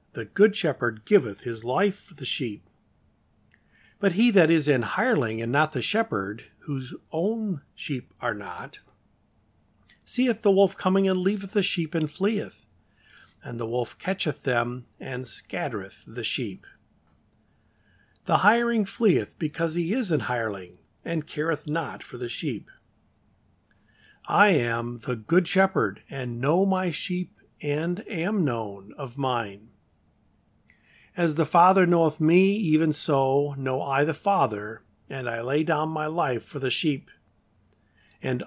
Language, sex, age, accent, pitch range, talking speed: English, male, 50-69, American, 110-180 Hz, 145 wpm